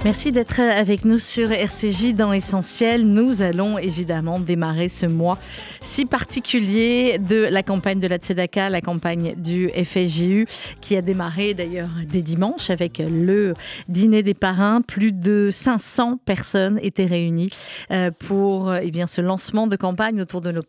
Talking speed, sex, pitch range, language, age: 155 wpm, female, 180-215 Hz, French, 30-49